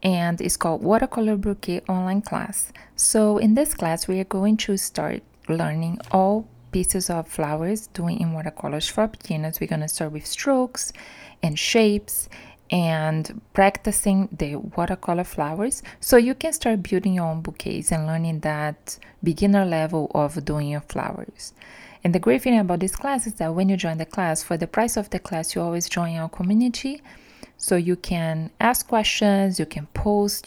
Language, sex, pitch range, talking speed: English, female, 165-215 Hz, 175 wpm